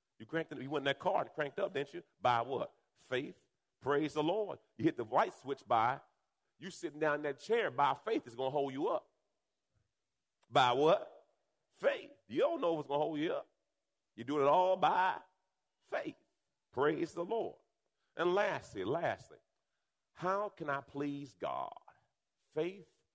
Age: 40-59